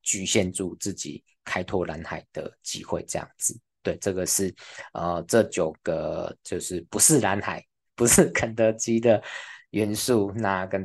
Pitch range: 90-105 Hz